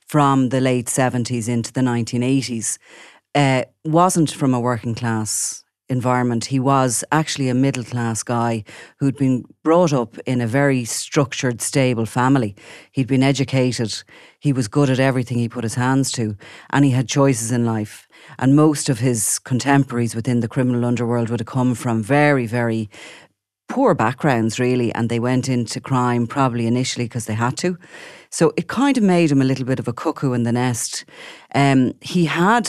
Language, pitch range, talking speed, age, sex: English, 120-140 Hz, 180 wpm, 40-59, female